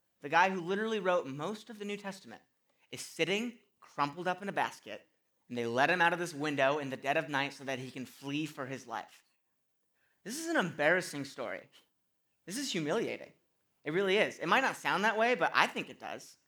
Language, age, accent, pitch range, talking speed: English, 30-49, American, 135-185 Hz, 220 wpm